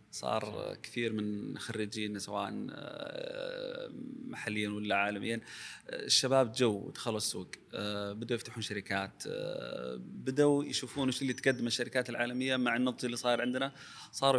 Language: Arabic